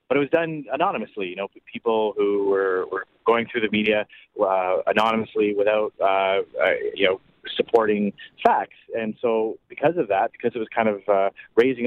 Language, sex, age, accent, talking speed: English, male, 30-49, American, 175 wpm